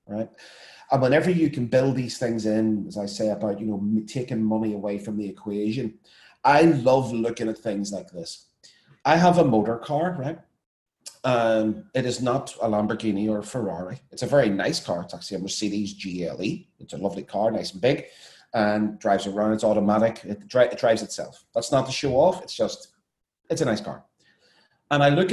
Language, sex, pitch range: English, male, 105-140 Hz